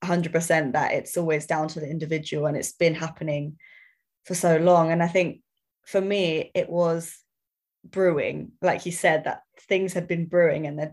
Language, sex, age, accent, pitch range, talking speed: English, female, 20-39, British, 155-175 Hz, 180 wpm